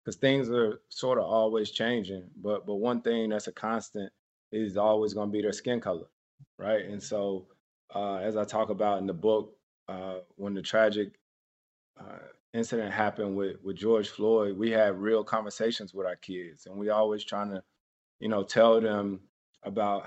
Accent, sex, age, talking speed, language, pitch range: American, male, 20-39, 180 wpm, English, 100-115 Hz